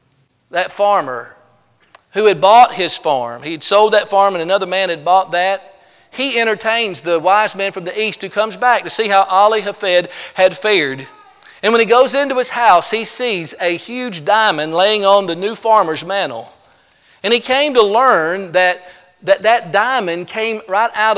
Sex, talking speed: male, 185 wpm